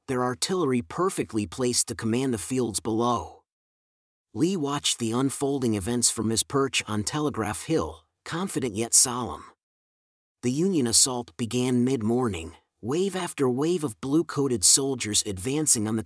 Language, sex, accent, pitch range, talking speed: English, male, American, 110-145 Hz, 140 wpm